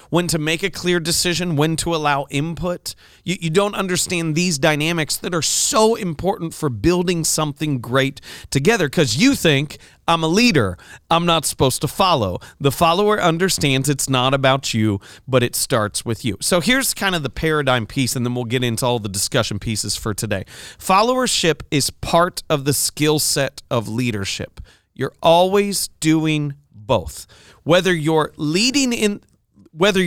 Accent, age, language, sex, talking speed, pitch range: American, 30-49, English, male, 170 wpm, 130-180 Hz